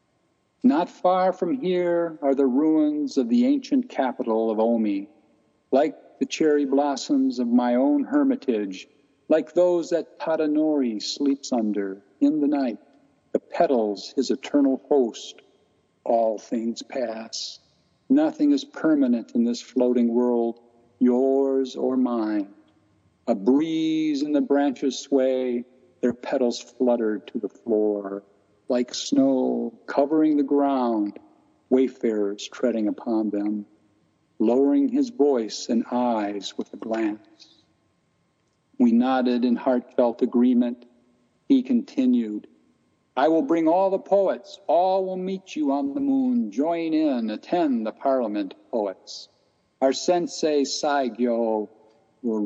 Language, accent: English, American